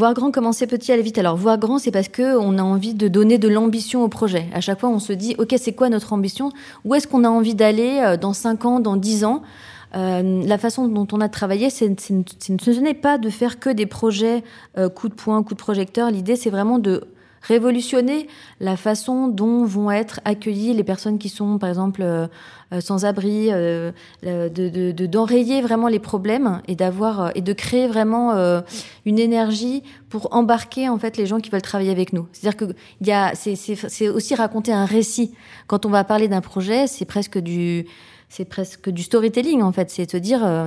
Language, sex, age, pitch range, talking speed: French, female, 20-39, 195-235 Hz, 210 wpm